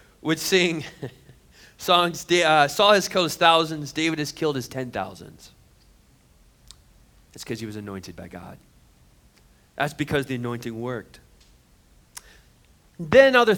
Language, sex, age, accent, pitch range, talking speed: English, male, 30-49, American, 125-185 Hz, 125 wpm